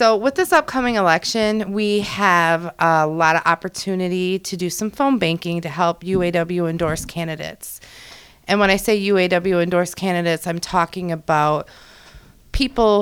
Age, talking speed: 30-49, 140 wpm